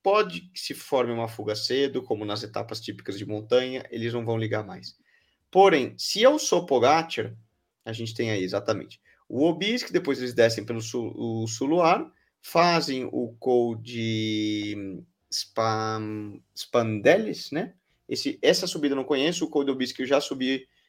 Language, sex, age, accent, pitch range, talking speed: Portuguese, male, 20-39, Brazilian, 110-145 Hz, 155 wpm